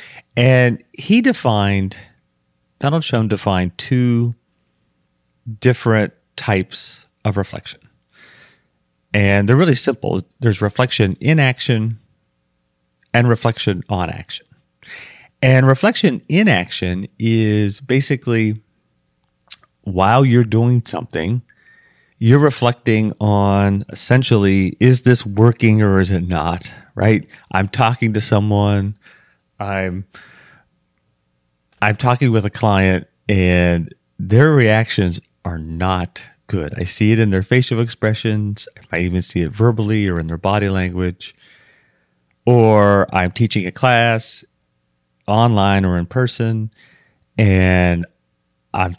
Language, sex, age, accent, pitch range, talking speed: English, male, 30-49, American, 95-120 Hz, 110 wpm